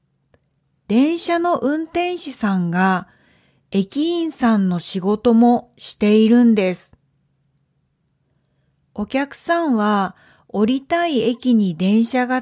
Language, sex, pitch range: Japanese, female, 175-275 Hz